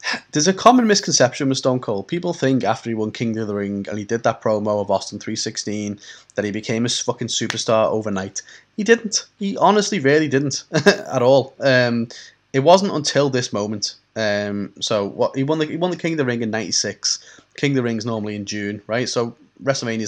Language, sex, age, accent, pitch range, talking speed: English, male, 20-39, British, 105-135 Hz, 205 wpm